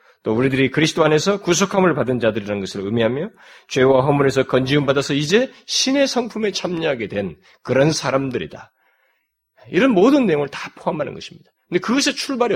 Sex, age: male, 30-49